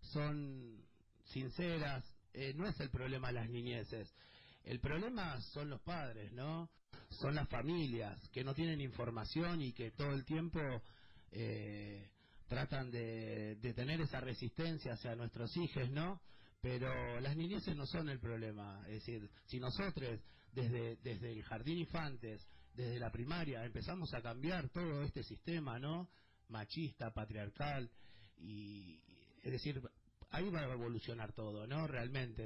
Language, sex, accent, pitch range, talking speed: Spanish, male, Argentinian, 110-150 Hz, 140 wpm